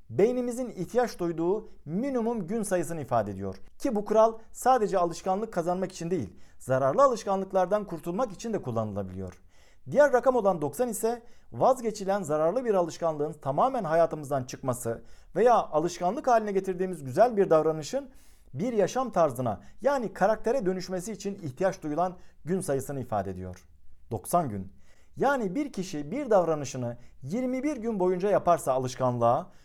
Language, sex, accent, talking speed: Turkish, male, native, 135 wpm